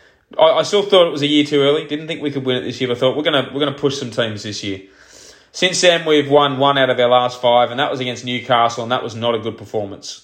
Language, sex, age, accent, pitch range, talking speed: English, male, 20-39, Australian, 120-150 Hz, 300 wpm